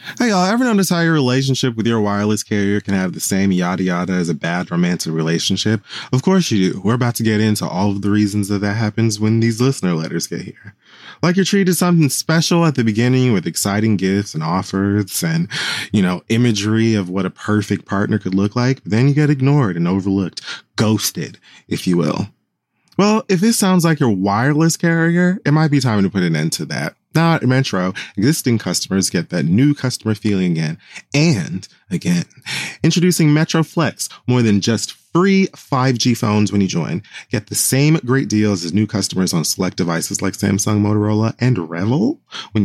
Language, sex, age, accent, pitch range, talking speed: English, male, 20-39, American, 100-145 Hz, 195 wpm